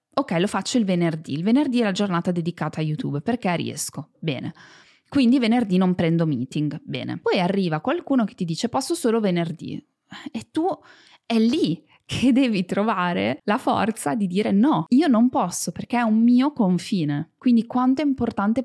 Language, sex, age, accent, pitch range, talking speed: Italian, female, 20-39, native, 175-230 Hz, 175 wpm